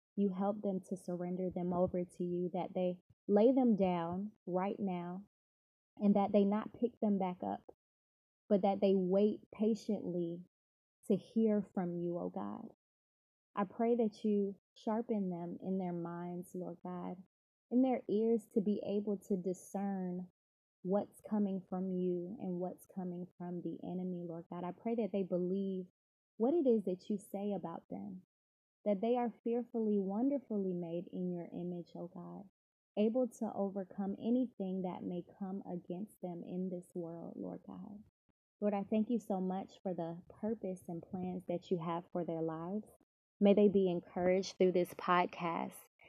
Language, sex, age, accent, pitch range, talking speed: English, female, 20-39, American, 175-210 Hz, 165 wpm